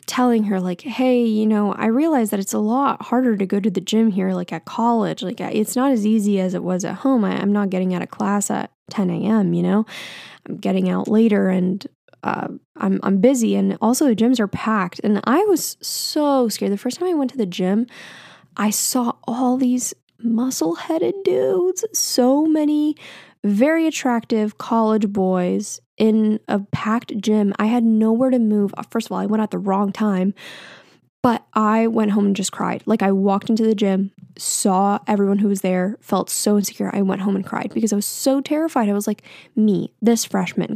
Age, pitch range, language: 10-29, 190-235 Hz, English